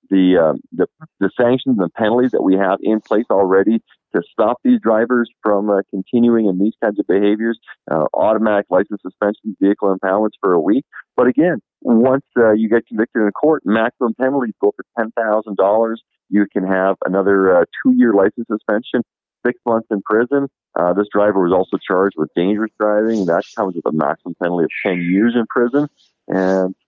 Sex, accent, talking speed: male, American, 180 wpm